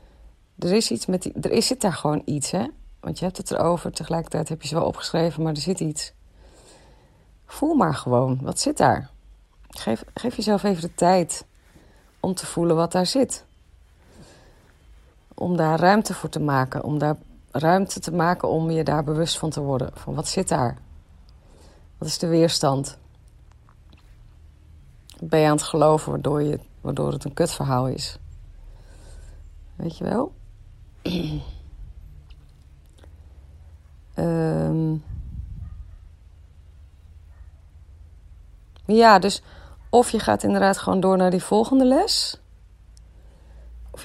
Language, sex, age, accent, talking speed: Dutch, female, 40-59, Dutch, 130 wpm